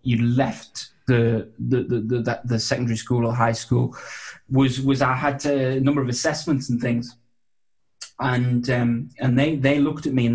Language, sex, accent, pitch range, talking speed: English, male, British, 120-135 Hz, 185 wpm